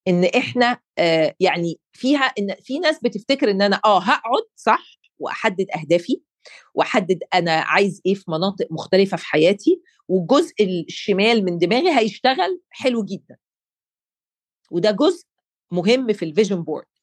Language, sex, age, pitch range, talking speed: Arabic, female, 40-59, 180-245 Hz, 135 wpm